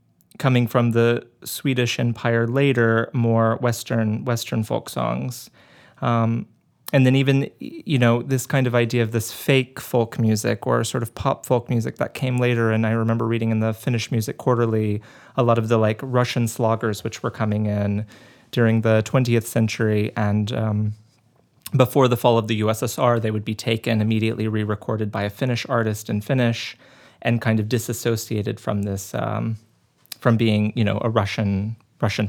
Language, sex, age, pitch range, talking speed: Finnish, male, 30-49, 110-135 Hz, 175 wpm